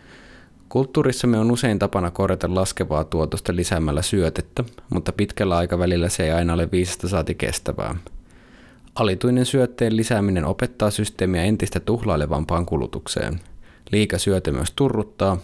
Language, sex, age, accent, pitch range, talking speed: Finnish, male, 20-39, native, 80-105 Hz, 115 wpm